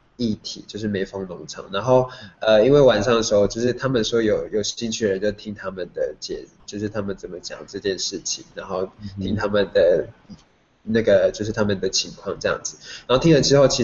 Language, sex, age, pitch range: Chinese, male, 20-39, 105-125 Hz